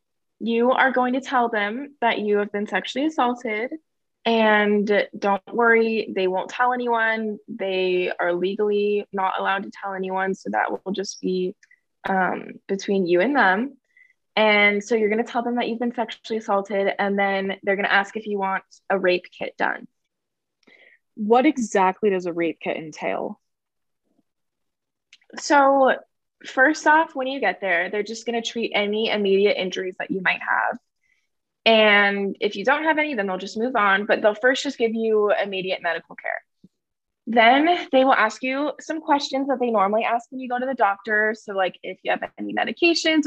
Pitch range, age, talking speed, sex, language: 195-250 Hz, 20-39, 185 wpm, female, English